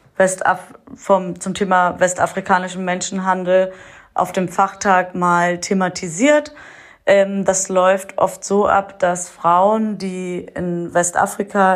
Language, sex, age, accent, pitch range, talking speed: German, female, 30-49, German, 185-230 Hz, 110 wpm